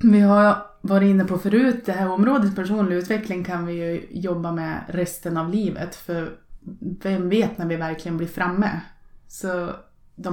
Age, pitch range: 20-39, 165-195 Hz